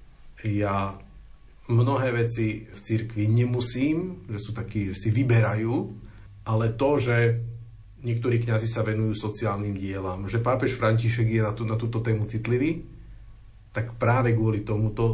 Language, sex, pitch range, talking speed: Slovak, male, 110-120 Hz, 140 wpm